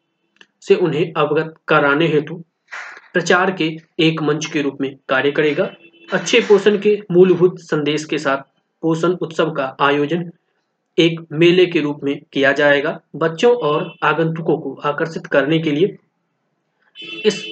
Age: 20-39